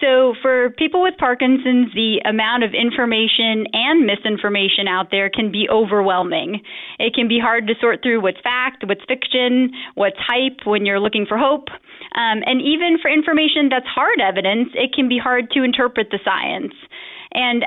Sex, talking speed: female, 175 wpm